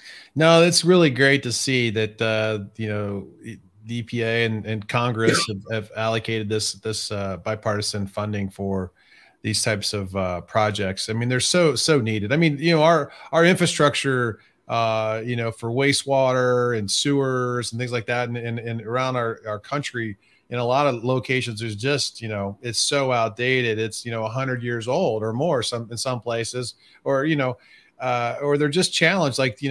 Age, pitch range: 30-49, 110-140 Hz